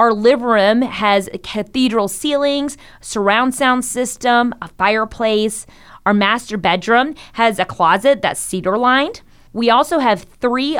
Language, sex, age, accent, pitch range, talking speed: English, female, 30-49, American, 200-260 Hz, 130 wpm